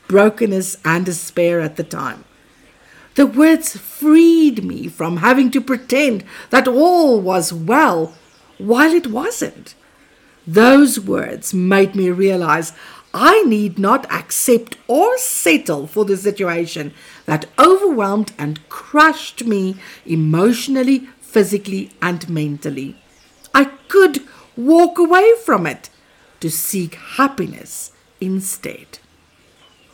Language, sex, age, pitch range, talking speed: English, female, 50-69, 170-275 Hz, 110 wpm